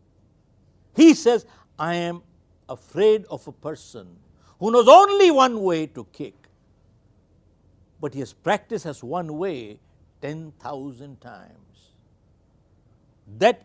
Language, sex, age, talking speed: Hindi, male, 60-79, 110 wpm